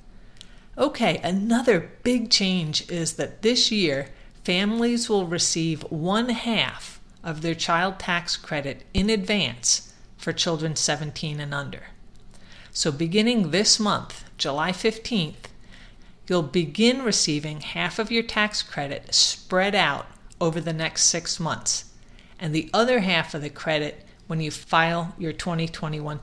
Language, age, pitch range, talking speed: English, 50-69, 160-210 Hz, 135 wpm